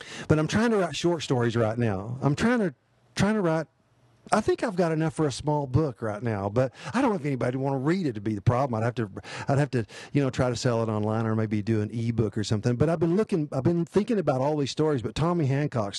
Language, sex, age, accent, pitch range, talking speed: English, male, 50-69, American, 115-155 Hz, 280 wpm